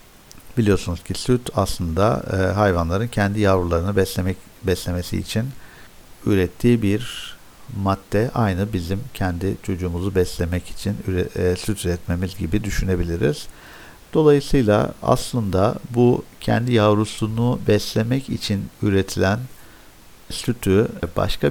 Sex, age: male, 50-69